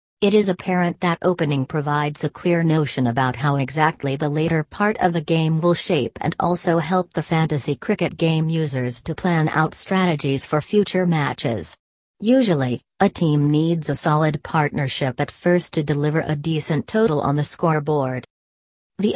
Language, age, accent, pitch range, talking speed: English, 40-59, American, 145-175 Hz, 165 wpm